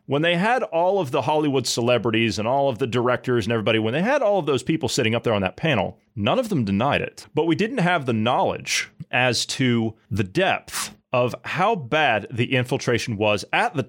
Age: 30-49